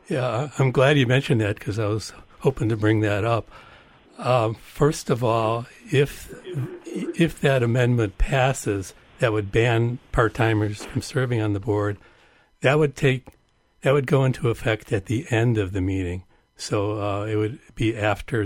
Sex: male